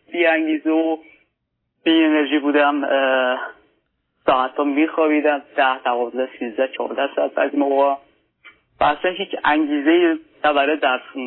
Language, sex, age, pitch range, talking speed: Persian, male, 30-49, 140-170 Hz, 105 wpm